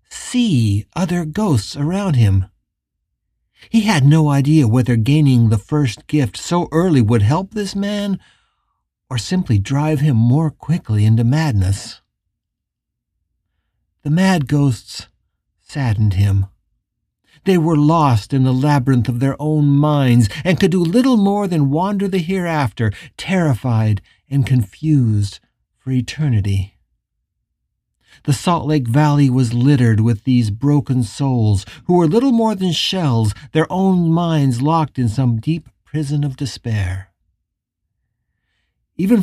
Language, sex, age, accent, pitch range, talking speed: English, male, 60-79, American, 110-165 Hz, 130 wpm